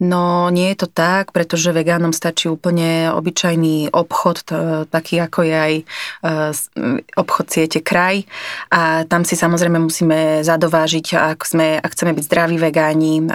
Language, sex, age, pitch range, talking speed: Slovak, female, 30-49, 160-185 Hz, 140 wpm